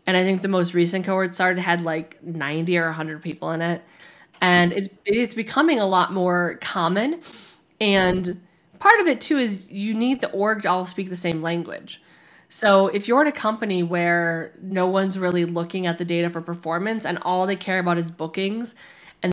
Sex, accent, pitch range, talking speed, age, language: female, American, 170-195 Hz, 200 wpm, 20-39, English